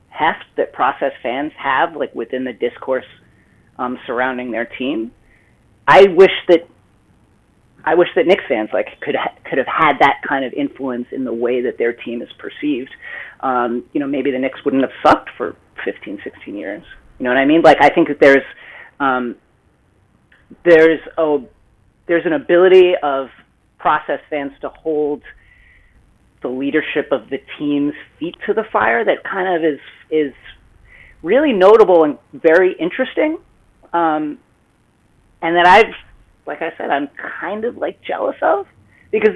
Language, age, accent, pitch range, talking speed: English, 30-49, American, 130-190 Hz, 160 wpm